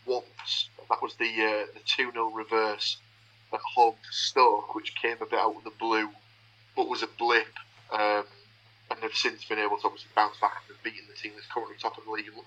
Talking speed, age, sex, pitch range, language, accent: 220 wpm, 30-49, male, 110-120 Hz, English, British